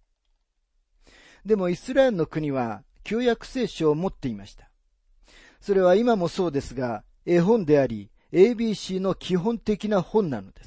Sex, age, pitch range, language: male, 40-59, 145-210 Hz, Japanese